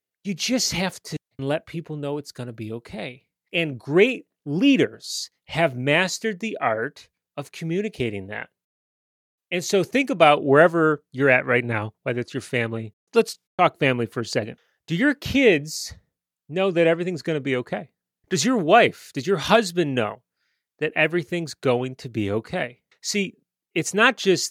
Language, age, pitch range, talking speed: English, 30-49, 130-180 Hz, 165 wpm